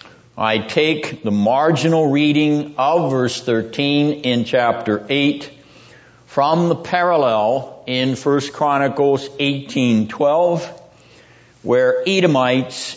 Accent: American